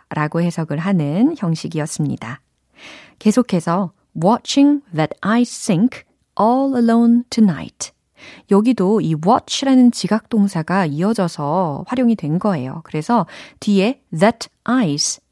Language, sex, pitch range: Korean, female, 170-250 Hz